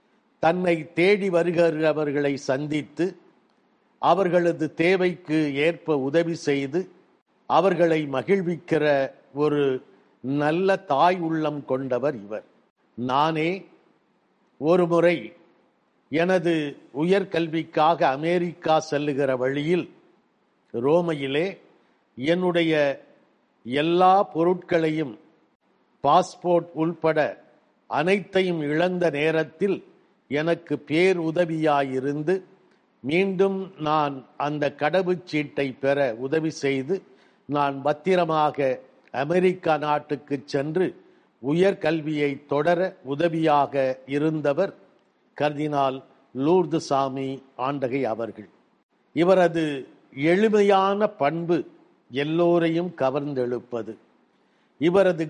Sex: male